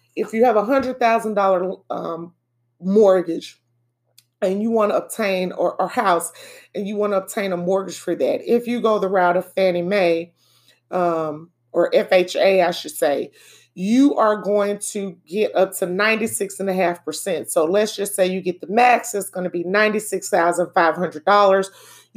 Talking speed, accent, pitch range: 155 wpm, American, 175-205 Hz